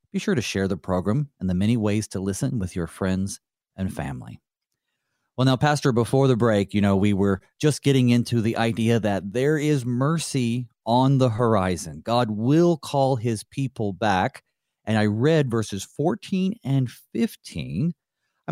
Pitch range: 95-135 Hz